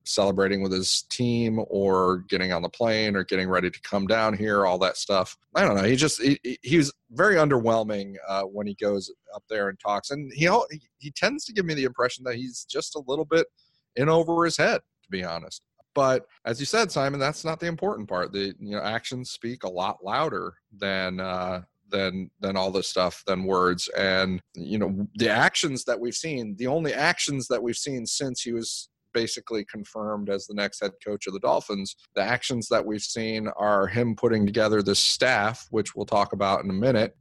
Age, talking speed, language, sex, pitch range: 30-49, 210 wpm, English, male, 100-125 Hz